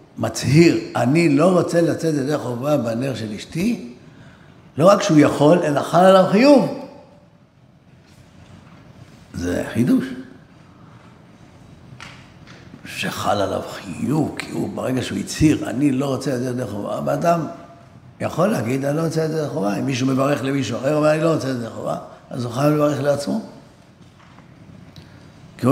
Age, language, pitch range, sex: 60-79, Hebrew, 120-160 Hz, male